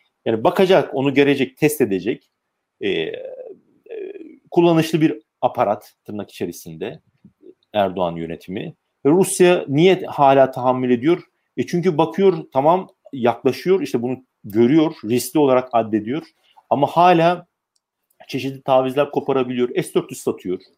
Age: 40-59